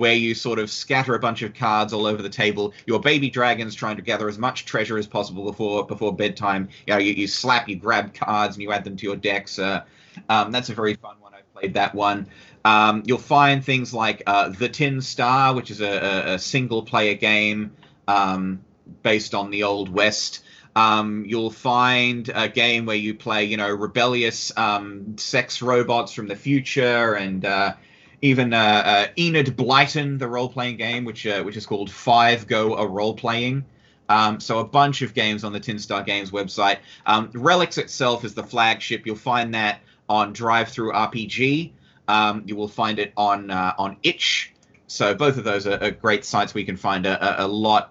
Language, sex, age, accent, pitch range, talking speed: English, male, 20-39, Australian, 100-125 Hz, 200 wpm